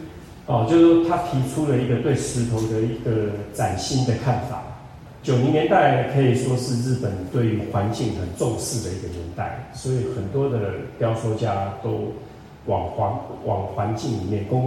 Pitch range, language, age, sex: 105-125 Hz, Chinese, 30-49, male